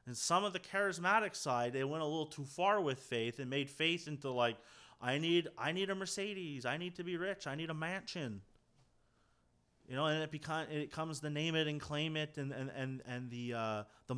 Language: English